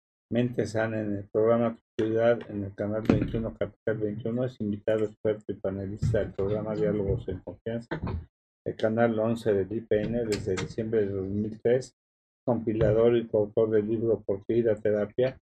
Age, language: 50-69, Spanish